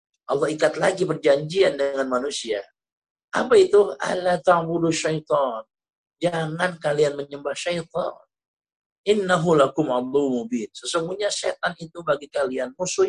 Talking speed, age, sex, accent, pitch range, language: 85 wpm, 50-69, male, native, 145-180 Hz, Indonesian